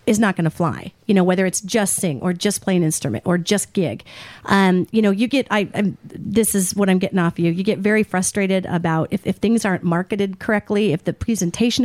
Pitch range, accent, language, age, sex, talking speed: 185-235 Hz, American, English, 40-59, female, 245 wpm